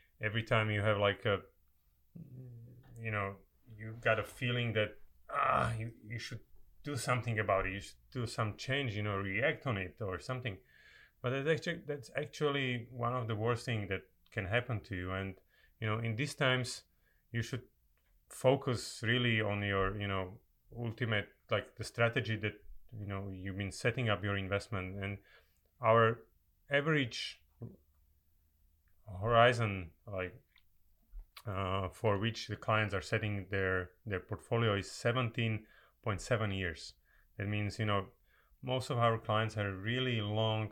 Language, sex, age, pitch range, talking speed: Polish, male, 30-49, 95-115 Hz, 155 wpm